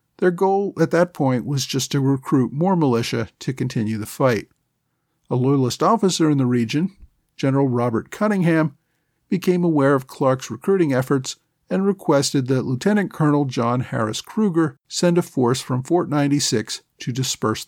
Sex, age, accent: male, 50-69, American